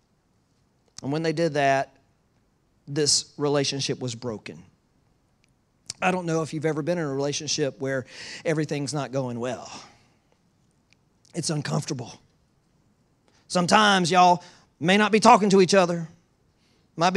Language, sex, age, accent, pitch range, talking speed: English, male, 40-59, American, 155-220 Hz, 125 wpm